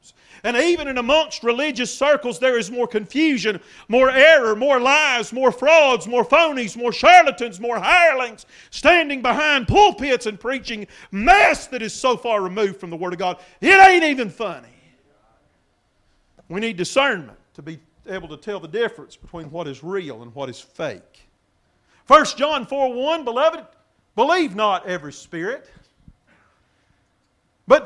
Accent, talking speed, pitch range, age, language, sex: American, 150 wpm, 195-275 Hz, 50-69, English, male